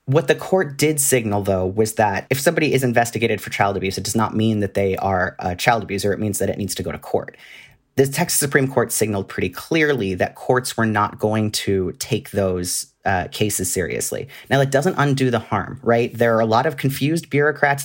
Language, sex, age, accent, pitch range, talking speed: English, male, 30-49, American, 100-130 Hz, 220 wpm